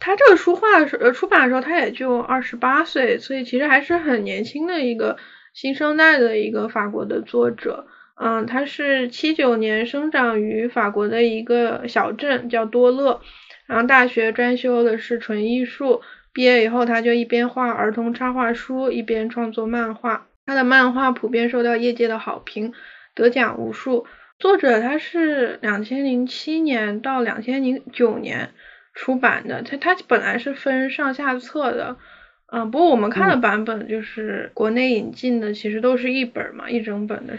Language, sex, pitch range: Chinese, female, 230-270 Hz